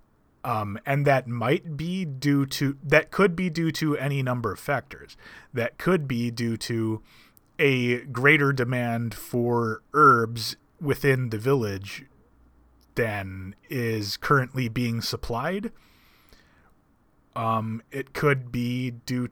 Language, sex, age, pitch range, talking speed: English, male, 30-49, 110-135 Hz, 120 wpm